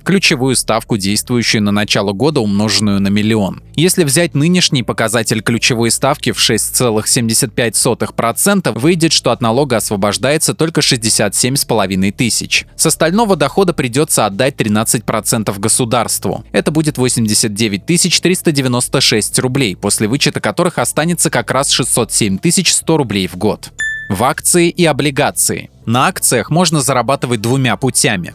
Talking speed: 125 wpm